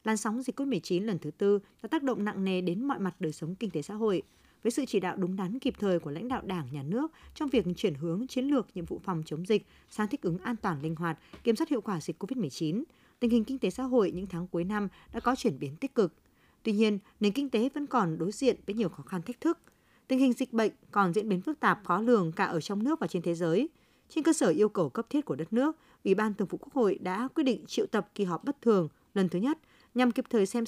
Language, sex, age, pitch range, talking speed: Vietnamese, female, 20-39, 180-250 Hz, 275 wpm